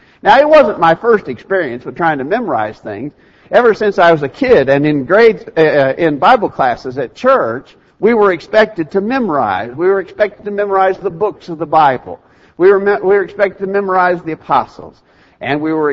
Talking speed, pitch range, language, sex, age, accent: 200 wpm, 140-210 Hz, English, male, 60-79, American